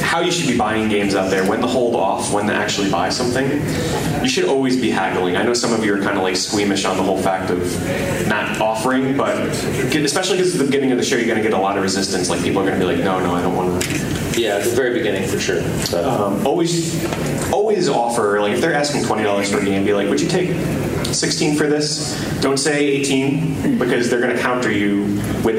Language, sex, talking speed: English, male, 245 wpm